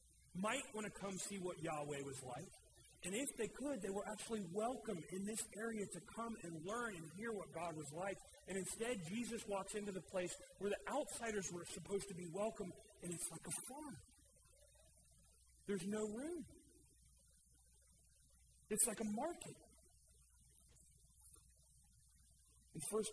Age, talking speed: 40-59, 155 wpm